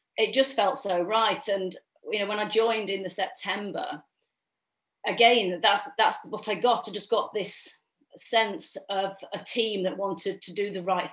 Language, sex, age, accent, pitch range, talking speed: English, female, 40-59, British, 180-220 Hz, 185 wpm